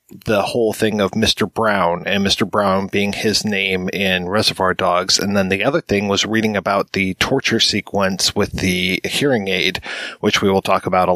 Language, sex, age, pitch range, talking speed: English, male, 30-49, 95-110 Hz, 195 wpm